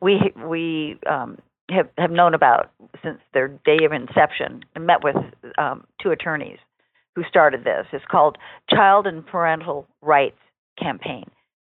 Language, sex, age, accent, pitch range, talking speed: English, female, 50-69, American, 150-195 Hz, 145 wpm